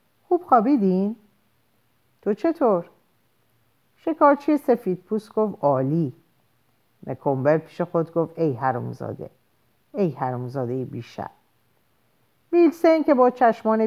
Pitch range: 140-220 Hz